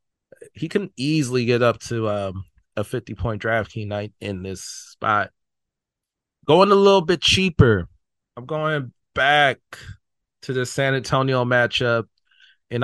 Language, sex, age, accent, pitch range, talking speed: English, male, 20-39, American, 110-135 Hz, 135 wpm